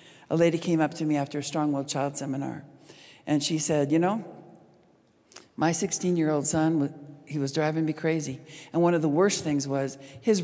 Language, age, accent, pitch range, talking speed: English, 60-79, American, 140-165 Hz, 185 wpm